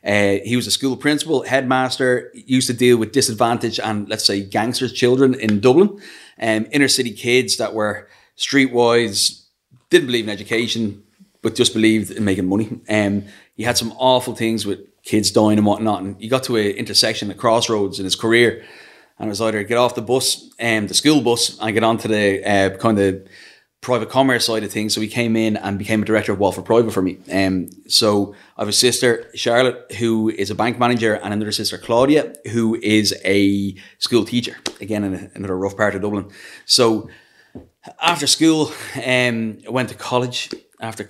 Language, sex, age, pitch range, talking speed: English, male, 30-49, 100-125 Hz, 195 wpm